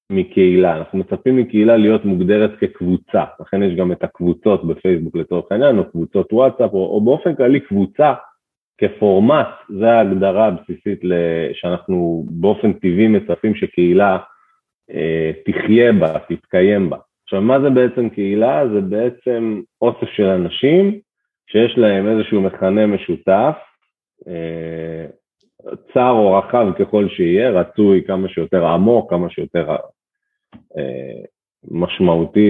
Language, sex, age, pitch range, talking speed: Hebrew, male, 30-49, 95-125 Hz, 100 wpm